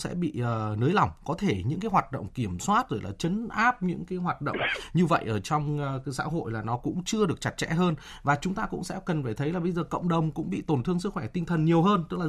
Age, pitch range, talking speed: 20-39, 145-185 Hz, 305 wpm